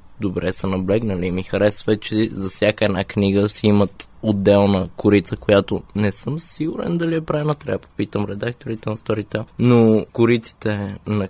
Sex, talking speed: male, 160 wpm